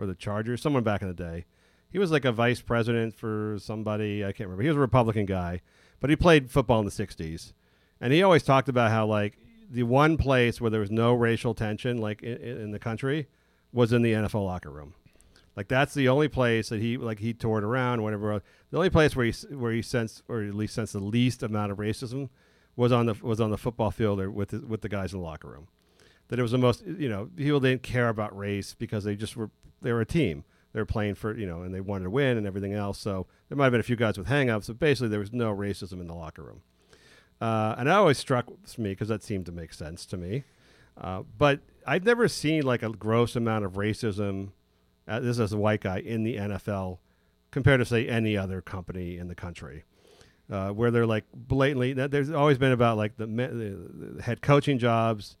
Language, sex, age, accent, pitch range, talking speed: English, male, 40-59, American, 100-125 Hz, 235 wpm